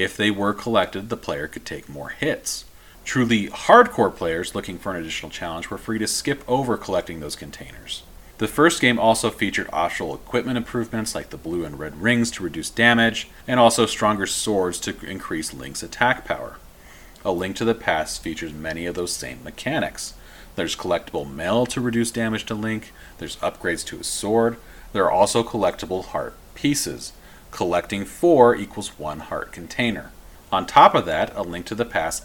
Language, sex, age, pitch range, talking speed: English, male, 40-59, 85-115 Hz, 180 wpm